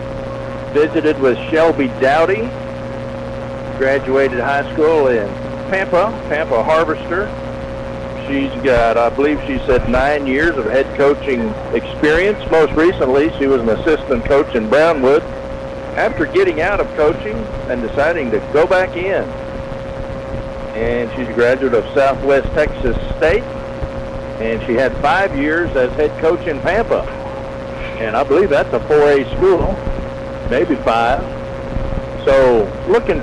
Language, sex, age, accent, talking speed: English, male, 50-69, American, 130 wpm